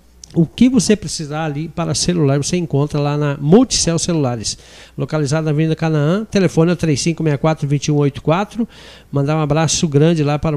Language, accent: Portuguese, Brazilian